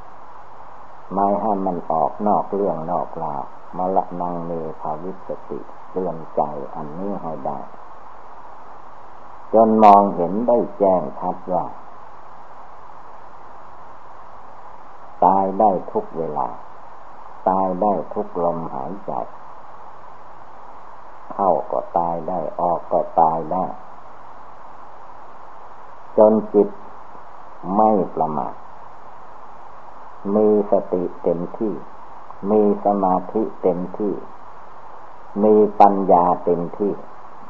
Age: 60-79